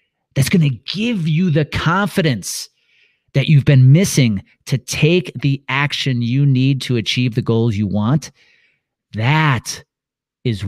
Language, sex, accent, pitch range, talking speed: English, male, American, 125-155 Hz, 140 wpm